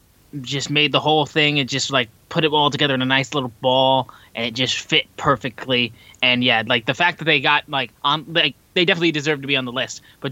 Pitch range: 130-160 Hz